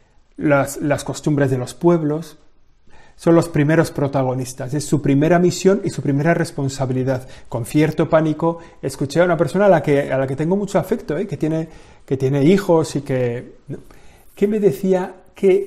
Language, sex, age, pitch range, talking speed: Spanish, male, 30-49, 135-185 Hz, 160 wpm